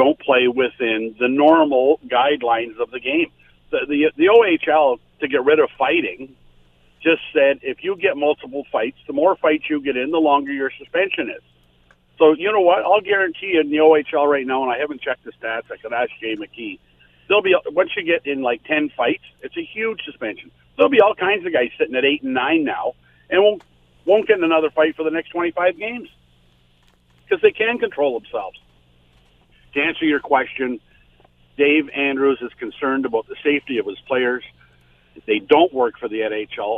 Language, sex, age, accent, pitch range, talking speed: English, male, 50-69, American, 110-180 Hz, 195 wpm